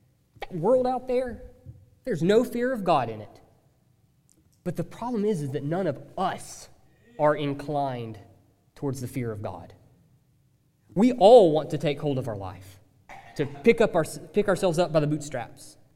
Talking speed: 175 wpm